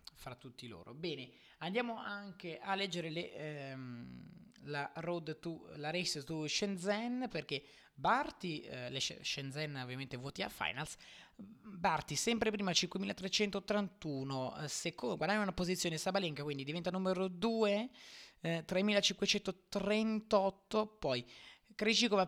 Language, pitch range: Italian, 150-200 Hz